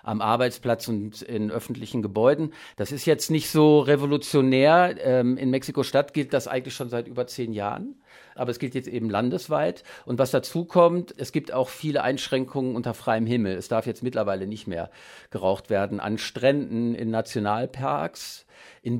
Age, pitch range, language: 50-69, 115-140 Hz, German